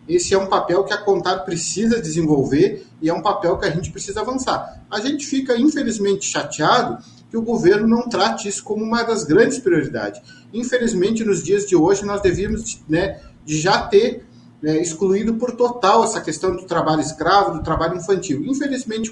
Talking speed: 180 wpm